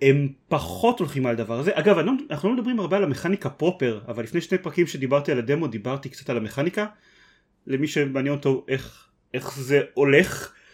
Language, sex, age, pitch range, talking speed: Hebrew, male, 30-49, 125-155 Hz, 180 wpm